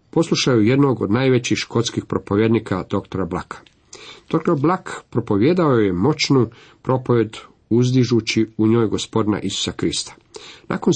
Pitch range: 100-125 Hz